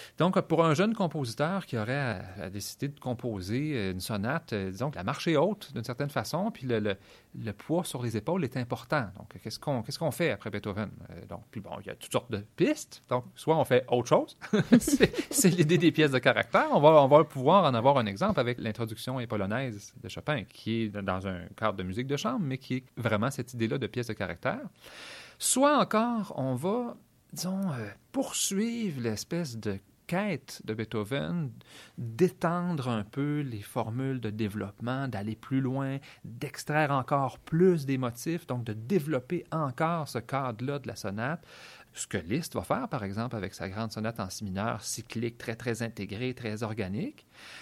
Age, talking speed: 30-49, 195 wpm